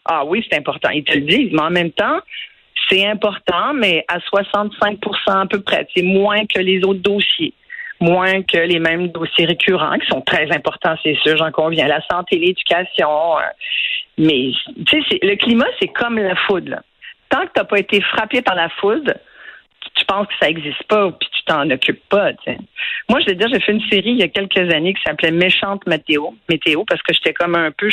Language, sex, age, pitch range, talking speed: French, female, 50-69, 180-230 Hz, 215 wpm